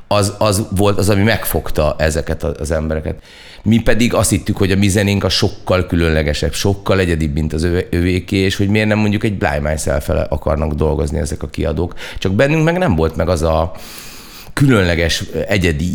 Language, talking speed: Hungarian, 175 wpm